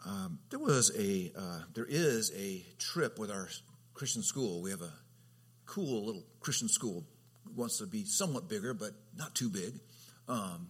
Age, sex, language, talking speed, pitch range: 50-69, male, English, 175 wpm, 85-130 Hz